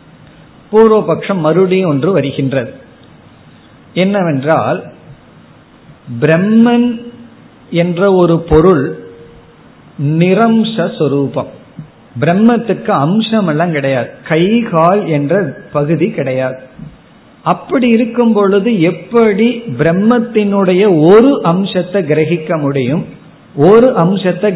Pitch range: 155-210 Hz